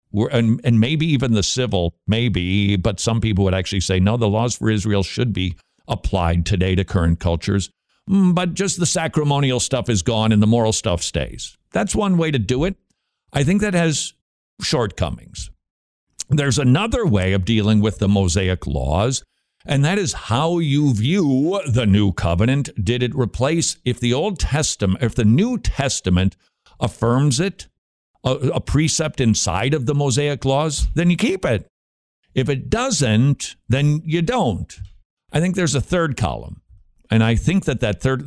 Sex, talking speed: male, 170 wpm